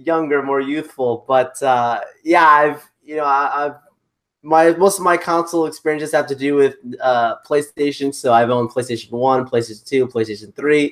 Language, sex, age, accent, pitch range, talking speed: English, male, 20-39, American, 125-150 Hz, 175 wpm